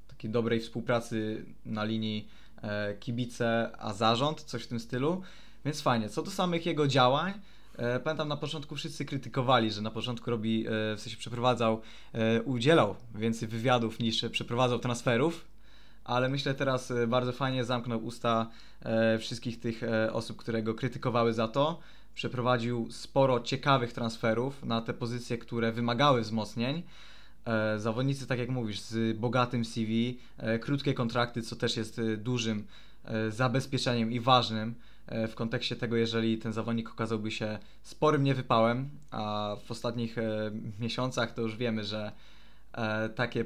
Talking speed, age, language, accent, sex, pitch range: 140 wpm, 20-39, Polish, native, male, 115-130 Hz